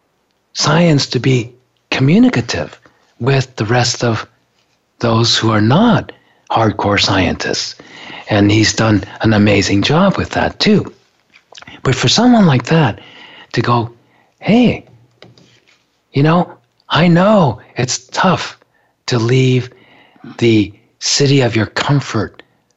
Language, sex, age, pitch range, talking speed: English, male, 40-59, 110-155 Hz, 115 wpm